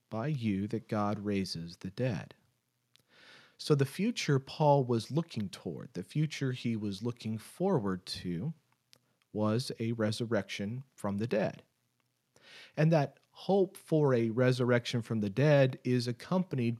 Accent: American